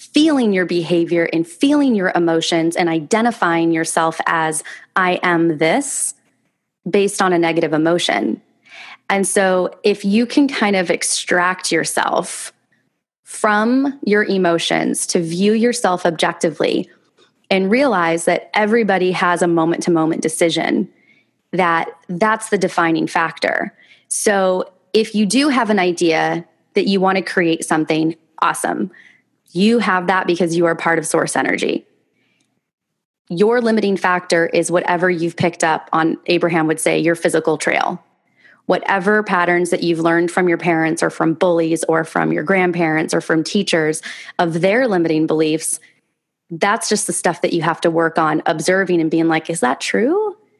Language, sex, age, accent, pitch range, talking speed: English, female, 20-39, American, 165-205 Hz, 150 wpm